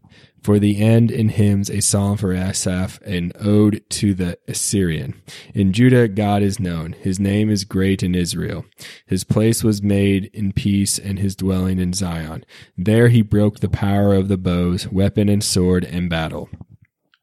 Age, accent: 20-39, American